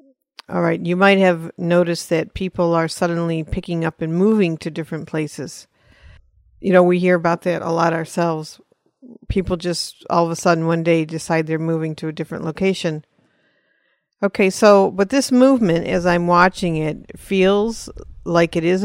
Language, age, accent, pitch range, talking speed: English, 50-69, American, 165-195 Hz, 170 wpm